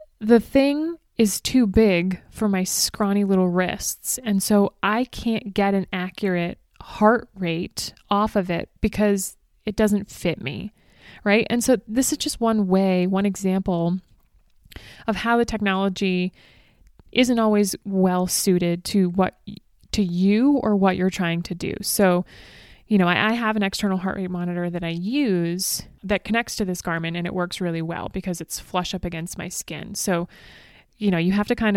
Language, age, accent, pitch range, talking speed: English, 20-39, American, 180-215 Hz, 175 wpm